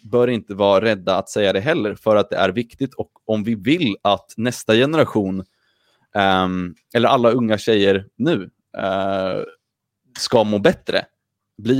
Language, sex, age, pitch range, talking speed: Swedish, male, 30-49, 100-125 Hz, 160 wpm